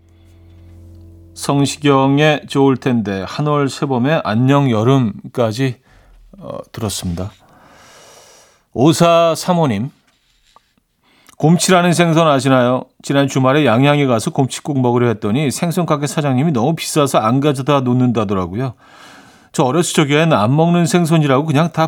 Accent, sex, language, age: native, male, Korean, 40-59